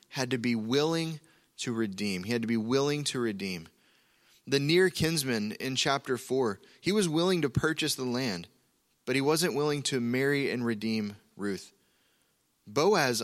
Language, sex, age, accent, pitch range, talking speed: English, male, 20-39, American, 120-160 Hz, 165 wpm